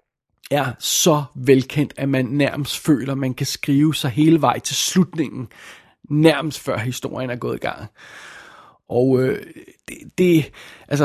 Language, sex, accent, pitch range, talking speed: Danish, male, native, 135-155 Hz, 150 wpm